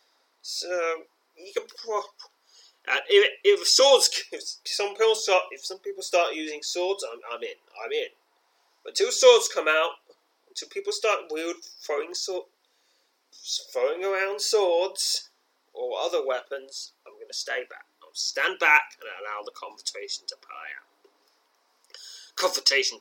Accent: British